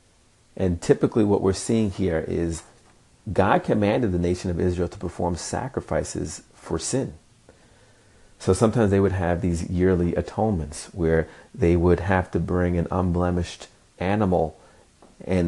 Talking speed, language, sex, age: 140 wpm, English, male, 30-49